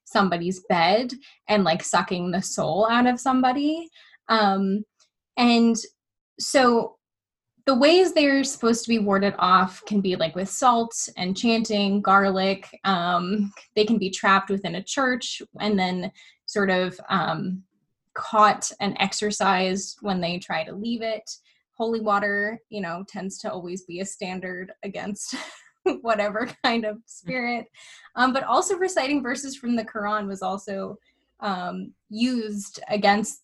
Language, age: English, 10-29